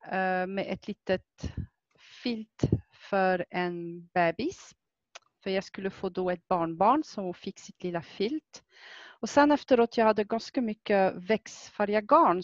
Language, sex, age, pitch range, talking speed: Swedish, female, 40-59, 185-245 Hz, 130 wpm